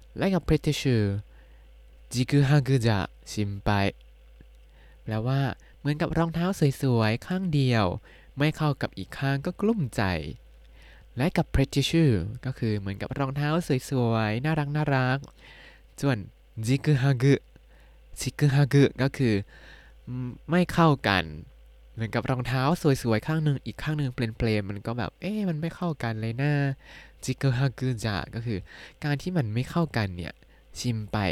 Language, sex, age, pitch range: Thai, male, 20-39, 100-145 Hz